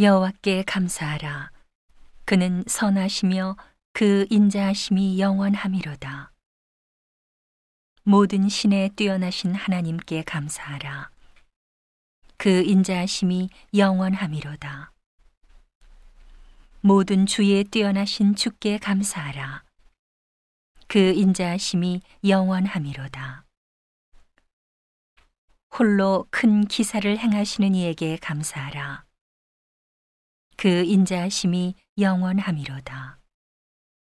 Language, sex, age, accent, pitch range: Korean, female, 40-59, native, 135-195 Hz